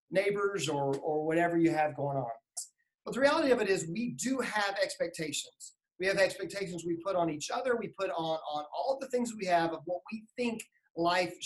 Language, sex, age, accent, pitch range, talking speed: English, male, 40-59, American, 165-220 Hz, 210 wpm